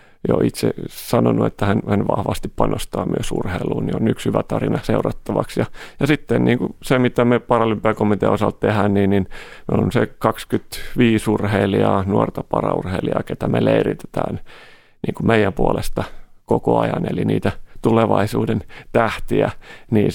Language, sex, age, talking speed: Finnish, male, 30-49, 145 wpm